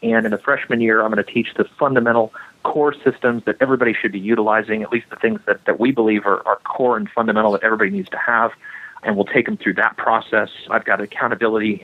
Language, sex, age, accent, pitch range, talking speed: English, male, 40-59, American, 105-120 Hz, 235 wpm